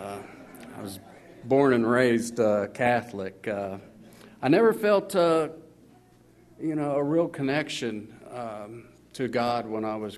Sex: male